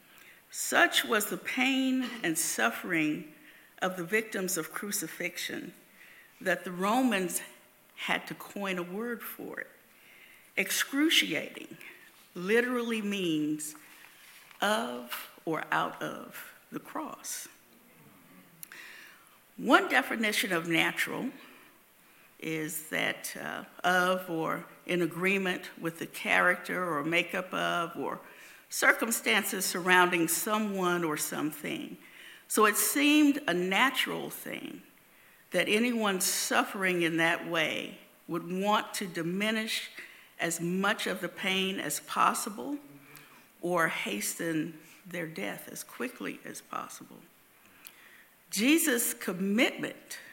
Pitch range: 175-230 Hz